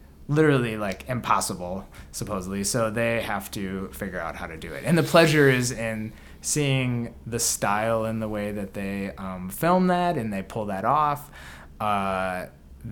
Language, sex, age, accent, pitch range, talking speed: English, male, 20-39, American, 95-135 Hz, 165 wpm